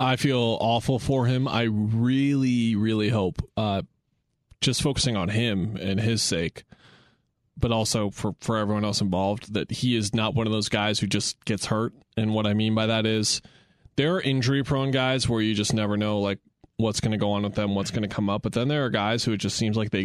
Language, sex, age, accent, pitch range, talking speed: English, male, 20-39, American, 105-120 Hz, 230 wpm